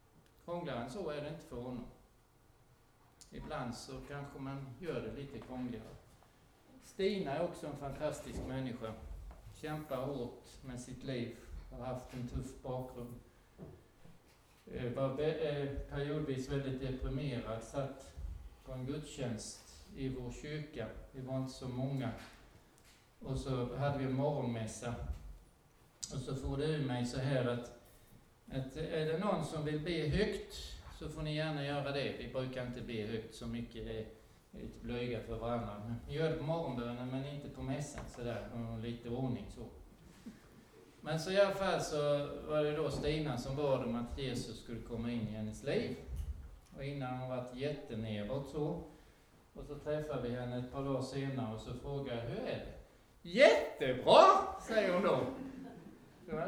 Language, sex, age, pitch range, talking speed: Swedish, male, 60-79, 120-145 Hz, 160 wpm